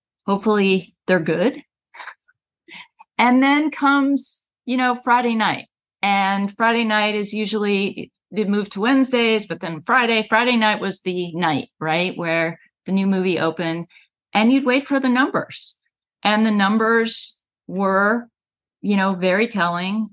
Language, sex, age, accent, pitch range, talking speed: English, female, 40-59, American, 185-240 Hz, 140 wpm